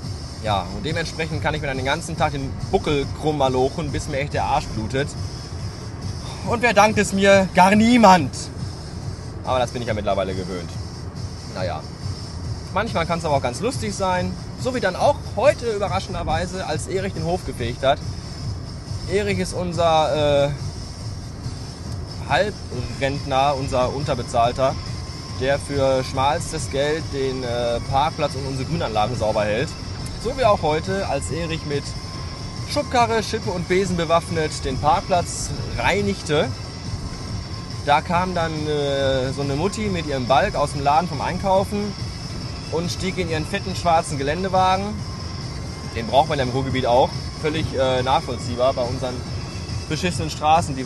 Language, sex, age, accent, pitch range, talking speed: German, male, 20-39, German, 110-150 Hz, 150 wpm